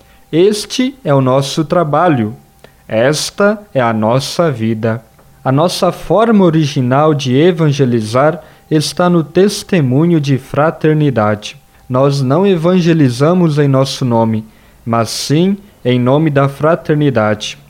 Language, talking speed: Portuguese, 110 wpm